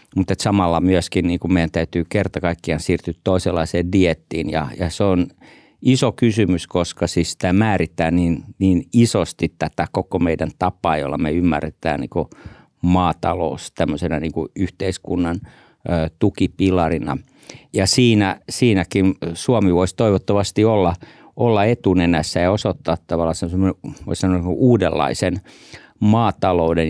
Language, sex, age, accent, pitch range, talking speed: Finnish, male, 50-69, native, 85-100 Hz, 110 wpm